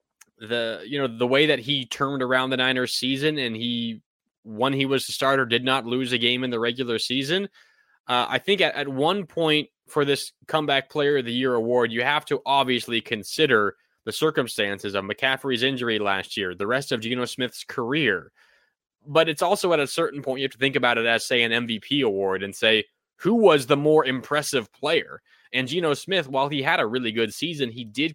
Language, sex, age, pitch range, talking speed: English, male, 20-39, 115-140 Hz, 210 wpm